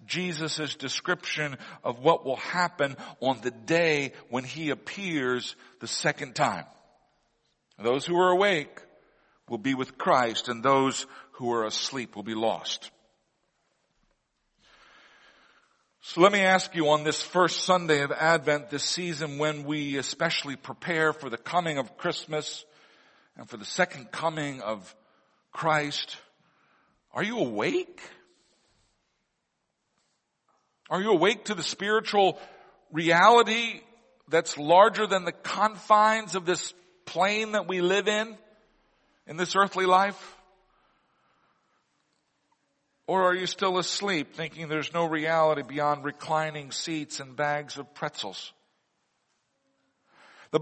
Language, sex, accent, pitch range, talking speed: English, male, American, 145-190 Hz, 120 wpm